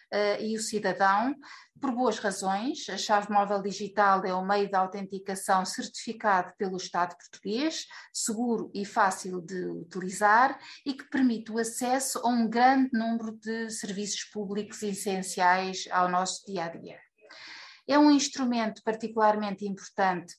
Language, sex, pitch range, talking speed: Portuguese, female, 190-225 Hz, 130 wpm